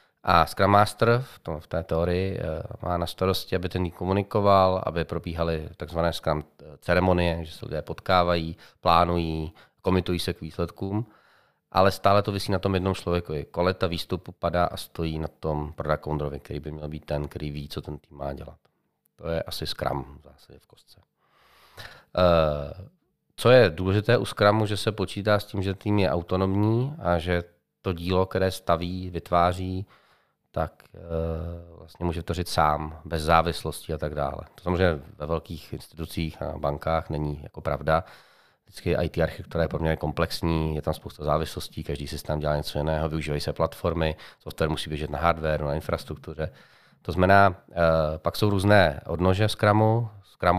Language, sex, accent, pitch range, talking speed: Czech, male, native, 80-95 Hz, 165 wpm